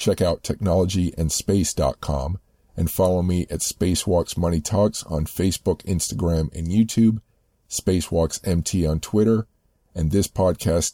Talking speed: 120 wpm